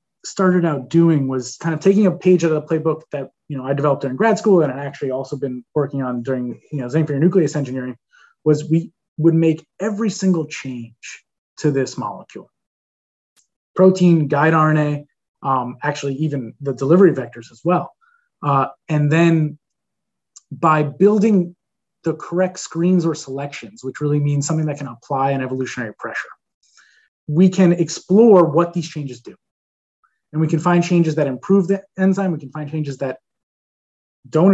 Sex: male